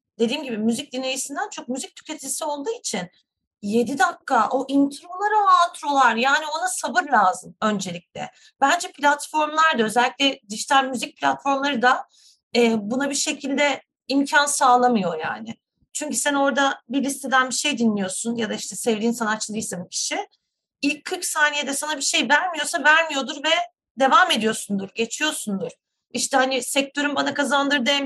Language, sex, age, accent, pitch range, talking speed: Turkish, female, 30-49, native, 230-290 Hz, 140 wpm